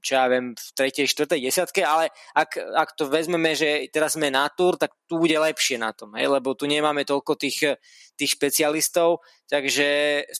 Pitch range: 140-155 Hz